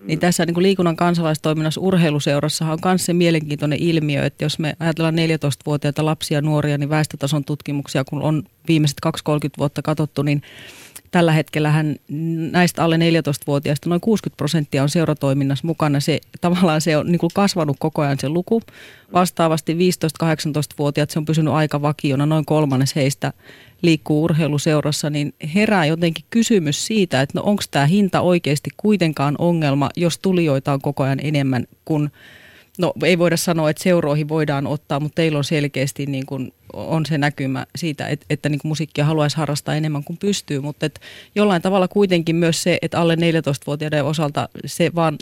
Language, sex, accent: Finnish, female, native